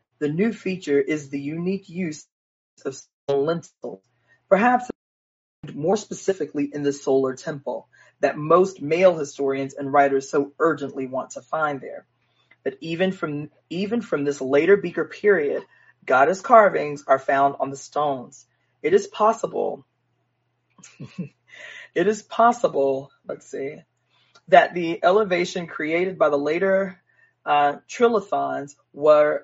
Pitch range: 145-190 Hz